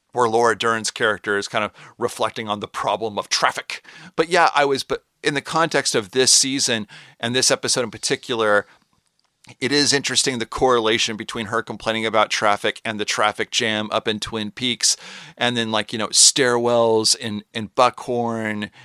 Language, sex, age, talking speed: English, male, 40-59, 180 wpm